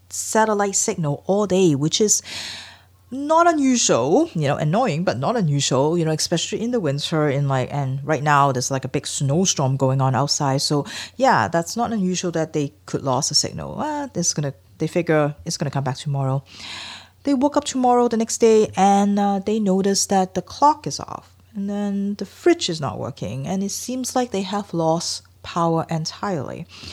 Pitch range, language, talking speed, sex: 140-205 Hz, English, 190 wpm, female